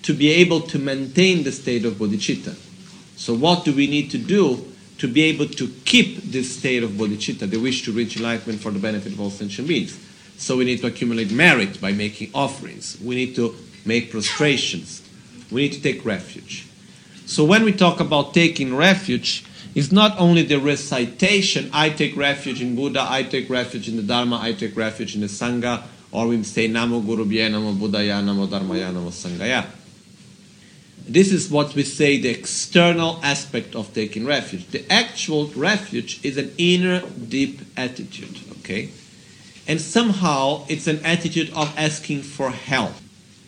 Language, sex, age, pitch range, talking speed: Italian, male, 40-59, 120-165 Hz, 170 wpm